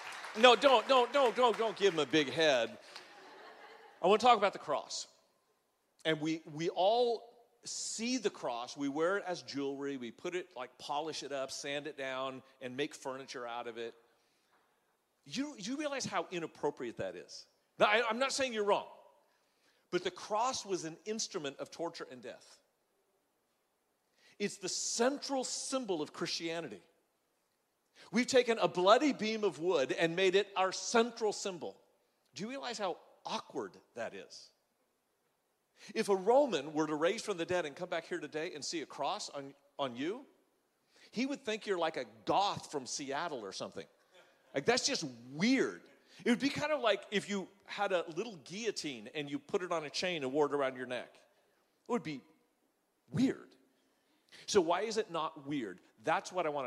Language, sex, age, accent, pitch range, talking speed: English, male, 40-59, American, 150-230 Hz, 180 wpm